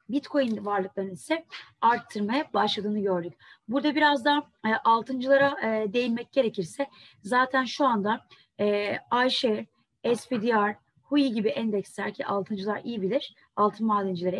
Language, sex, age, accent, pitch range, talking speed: Turkish, female, 30-49, native, 205-270 Hz, 120 wpm